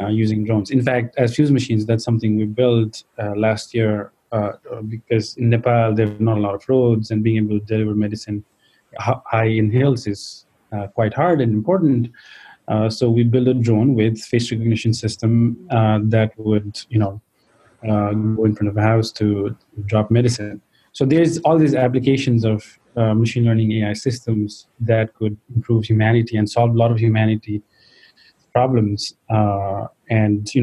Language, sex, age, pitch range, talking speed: English, male, 30-49, 105-120 Hz, 175 wpm